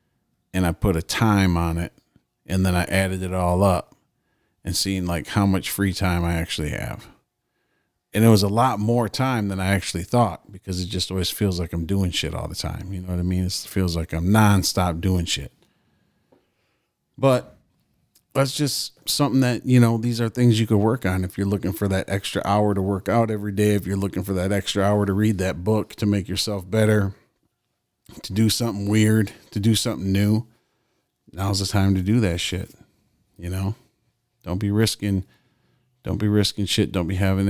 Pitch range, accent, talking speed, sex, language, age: 95-110 Hz, American, 205 wpm, male, English, 40-59